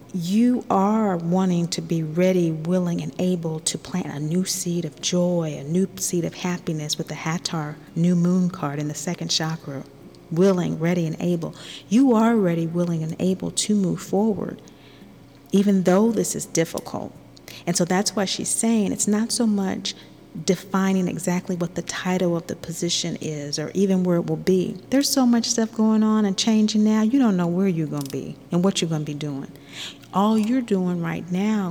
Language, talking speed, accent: English, 195 wpm, American